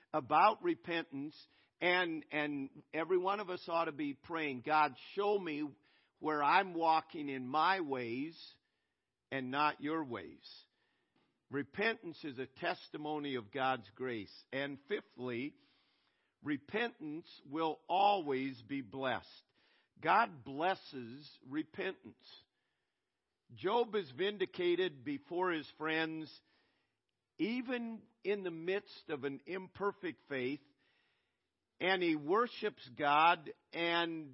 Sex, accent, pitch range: male, American, 135-190 Hz